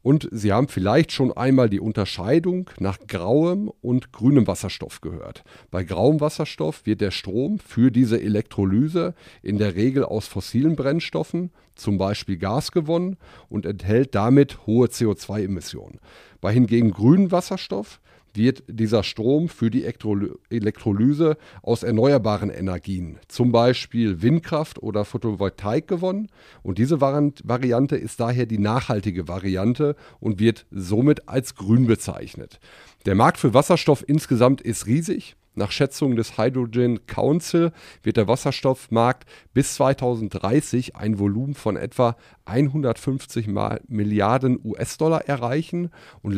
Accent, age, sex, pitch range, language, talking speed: German, 40-59, male, 105-140 Hz, German, 125 wpm